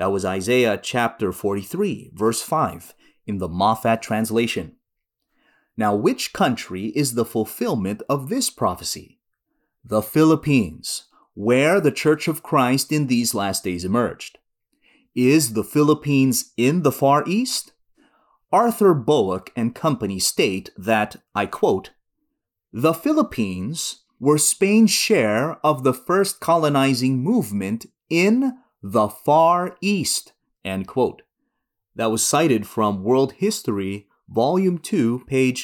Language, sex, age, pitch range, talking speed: English, male, 30-49, 115-175 Hz, 120 wpm